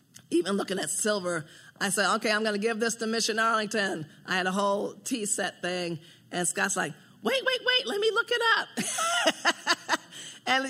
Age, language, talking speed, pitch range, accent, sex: 40-59, English, 190 wpm, 185-240 Hz, American, female